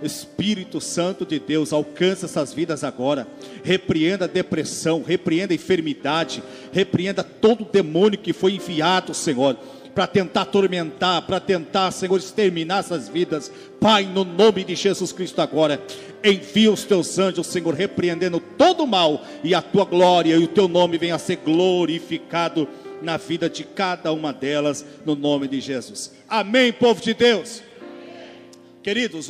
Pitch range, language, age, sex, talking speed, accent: 150-185 Hz, Portuguese, 50-69, male, 150 wpm, Brazilian